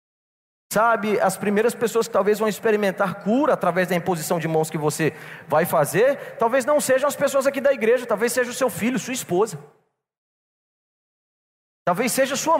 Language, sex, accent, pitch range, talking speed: Portuguese, male, Brazilian, 185-255 Hz, 170 wpm